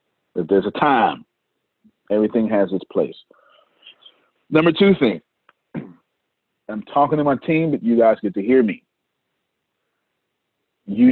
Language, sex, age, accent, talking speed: English, male, 40-59, American, 130 wpm